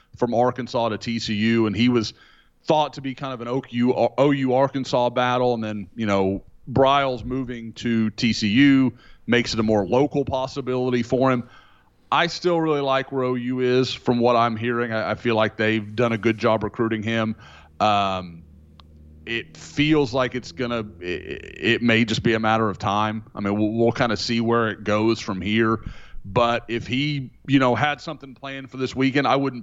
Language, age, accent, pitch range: English, 30-49, American, 110-125 Hz